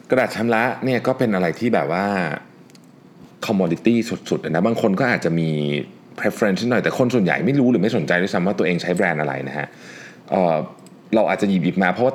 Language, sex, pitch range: Thai, male, 85-115 Hz